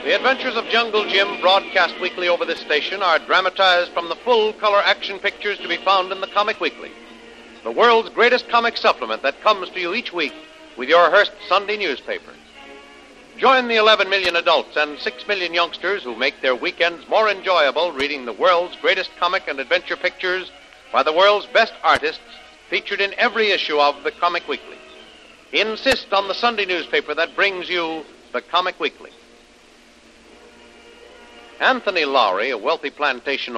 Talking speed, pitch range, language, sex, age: 165 wpm, 150-205 Hz, English, male, 60-79